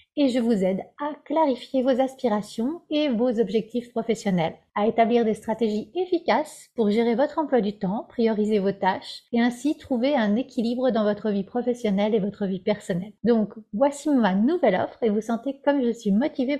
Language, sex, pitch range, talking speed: French, female, 220-280 Hz, 185 wpm